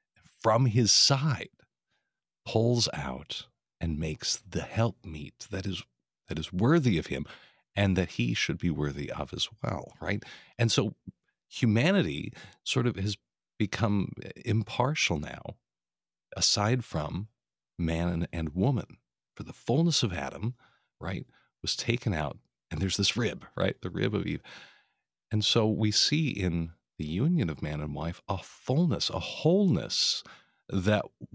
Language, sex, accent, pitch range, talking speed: English, male, American, 85-115 Hz, 145 wpm